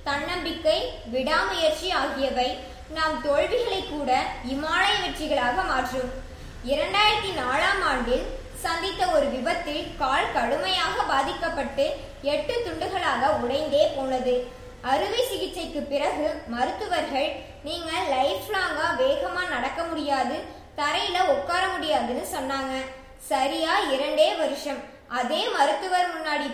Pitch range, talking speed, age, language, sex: 270-345 Hz, 55 wpm, 20-39, Tamil, male